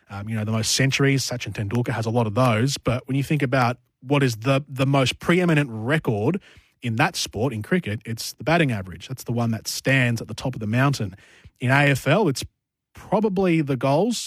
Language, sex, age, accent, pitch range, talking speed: English, male, 20-39, Australian, 120-150 Hz, 215 wpm